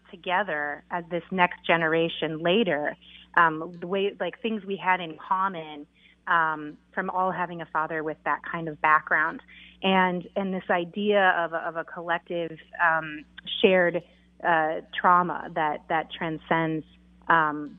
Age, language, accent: 30-49, English, American